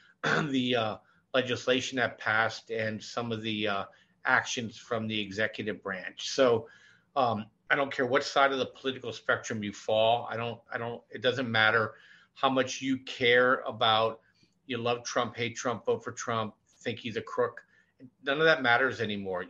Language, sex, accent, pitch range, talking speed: English, male, American, 110-130 Hz, 175 wpm